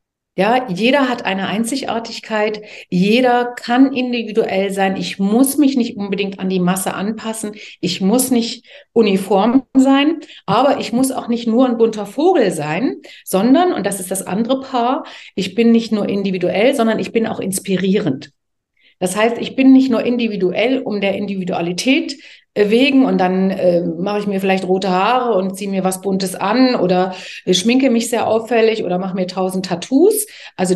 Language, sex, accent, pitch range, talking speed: German, female, German, 185-240 Hz, 170 wpm